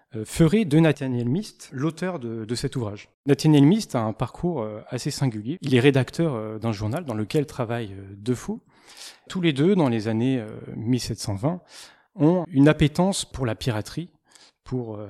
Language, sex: French, male